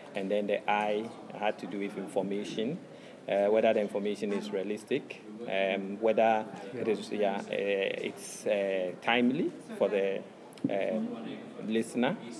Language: French